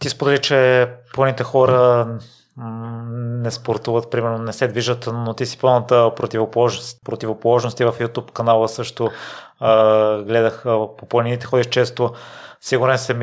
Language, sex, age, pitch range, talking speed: Bulgarian, male, 30-49, 110-120 Hz, 130 wpm